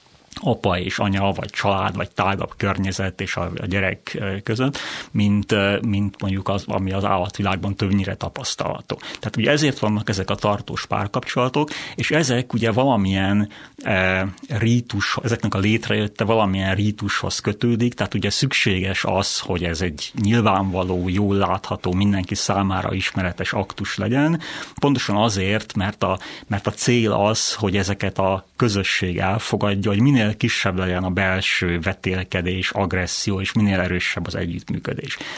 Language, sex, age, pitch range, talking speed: Hungarian, male, 30-49, 95-110 Hz, 140 wpm